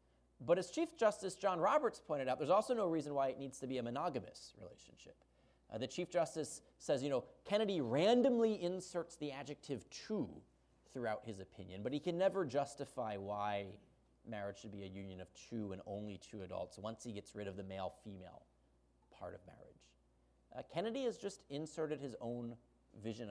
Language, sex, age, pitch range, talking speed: English, male, 30-49, 90-140 Hz, 185 wpm